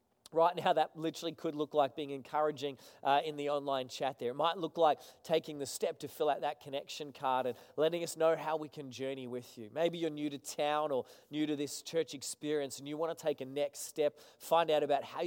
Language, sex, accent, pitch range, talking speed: English, male, Australian, 135-155 Hz, 240 wpm